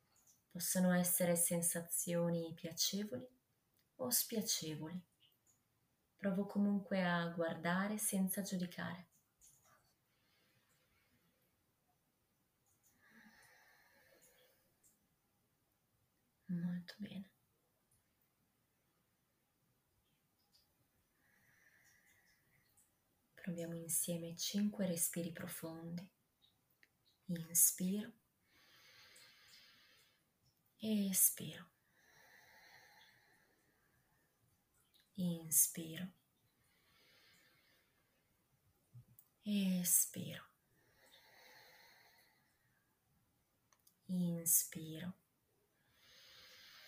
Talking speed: 30 wpm